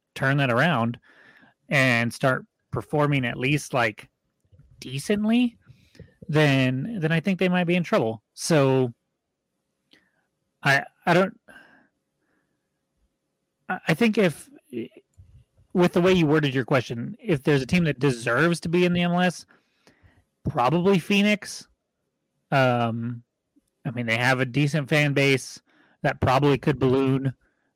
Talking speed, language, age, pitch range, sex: 130 wpm, English, 30-49, 120-155 Hz, male